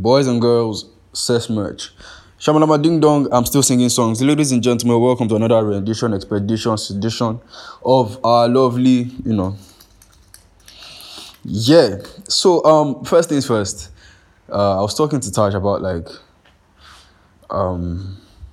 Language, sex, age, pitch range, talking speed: English, male, 10-29, 95-120 Hz, 135 wpm